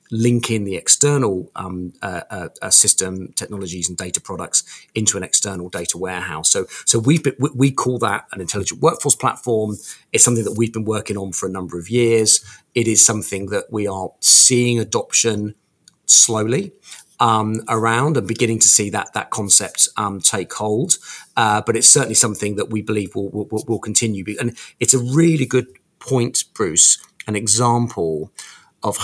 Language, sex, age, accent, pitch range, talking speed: English, male, 40-59, British, 95-120 Hz, 165 wpm